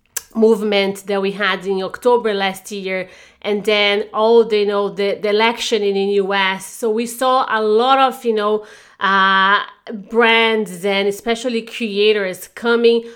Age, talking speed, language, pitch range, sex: 30-49, 155 wpm, English, 200-235 Hz, female